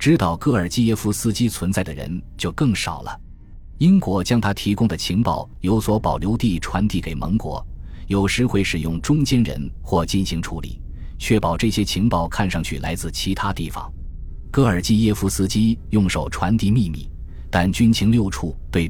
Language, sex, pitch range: Chinese, male, 80-110 Hz